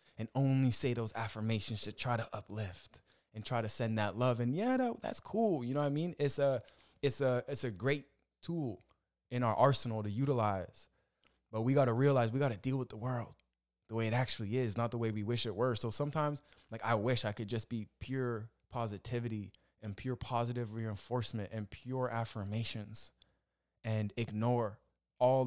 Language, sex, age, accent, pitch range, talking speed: English, male, 20-39, American, 110-130 Hz, 185 wpm